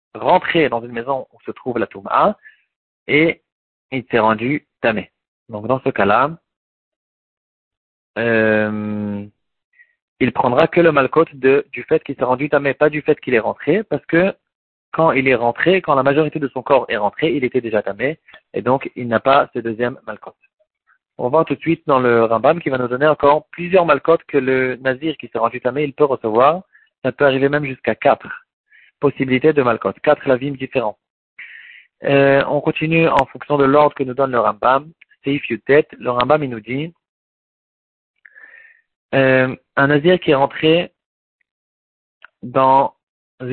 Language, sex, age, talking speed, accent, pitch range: French, male, 40-59, 170 wpm, French, 125-155 Hz